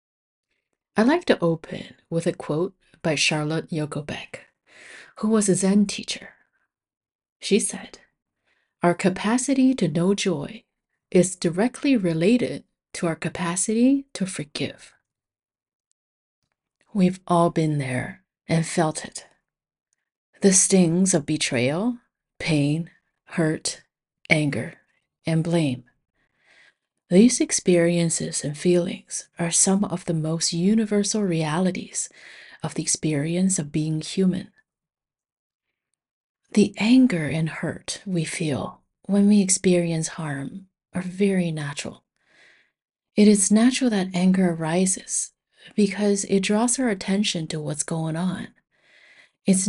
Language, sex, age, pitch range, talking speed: English, female, 30-49, 160-205 Hz, 110 wpm